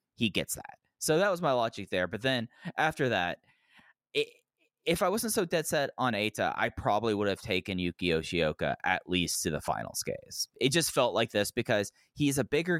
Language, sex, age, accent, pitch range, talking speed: English, male, 20-39, American, 95-130 Hz, 200 wpm